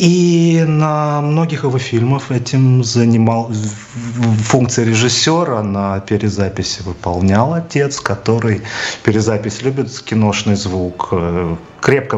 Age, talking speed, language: 30-49, 95 wpm, Russian